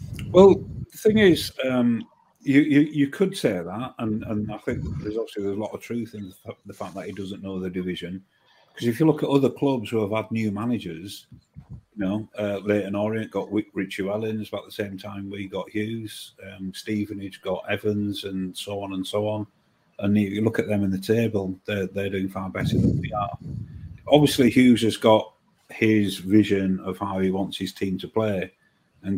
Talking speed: 210 wpm